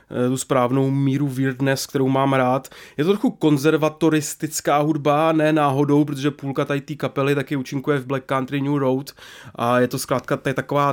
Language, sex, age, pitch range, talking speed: English, male, 20-39, 130-150 Hz, 175 wpm